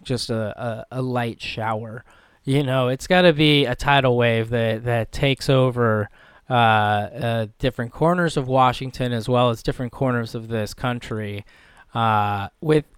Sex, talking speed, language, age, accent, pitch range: male, 160 wpm, English, 20-39, American, 115-140 Hz